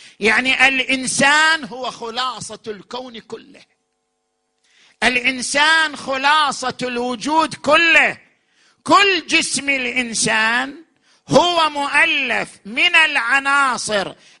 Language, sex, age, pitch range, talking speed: Arabic, male, 50-69, 235-280 Hz, 70 wpm